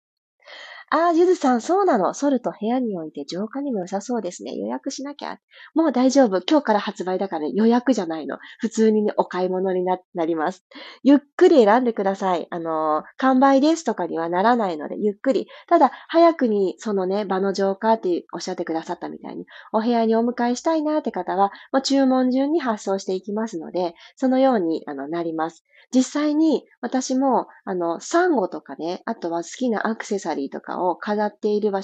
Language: Japanese